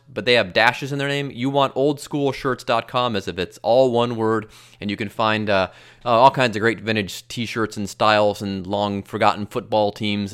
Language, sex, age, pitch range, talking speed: English, male, 30-49, 105-140 Hz, 195 wpm